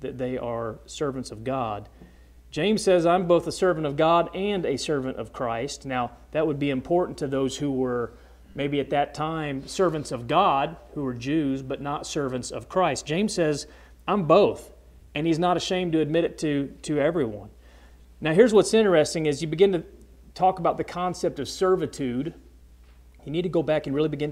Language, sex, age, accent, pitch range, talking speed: English, male, 40-59, American, 125-165 Hz, 190 wpm